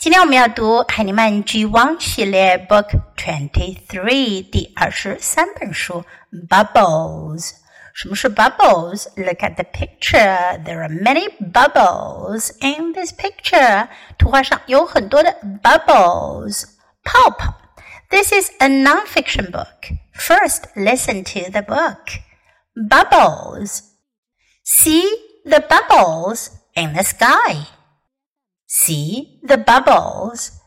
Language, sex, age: Chinese, female, 50-69